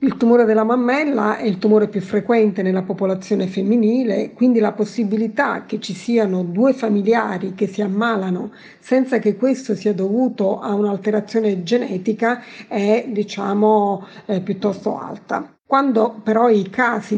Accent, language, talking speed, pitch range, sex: native, Italian, 140 wpm, 200-230 Hz, female